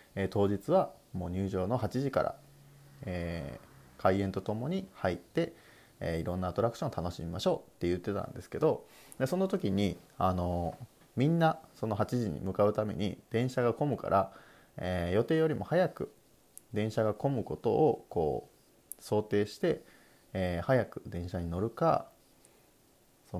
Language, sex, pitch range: Japanese, male, 95-140 Hz